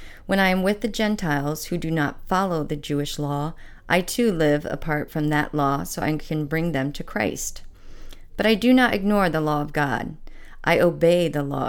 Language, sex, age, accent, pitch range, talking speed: English, female, 40-59, American, 150-180 Hz, 205 wpm